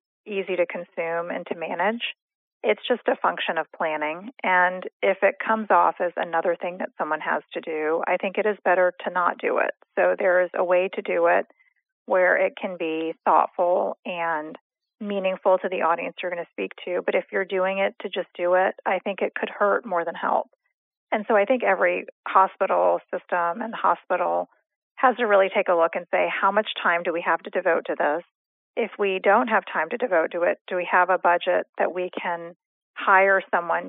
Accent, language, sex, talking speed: American, English, female, 210 wpm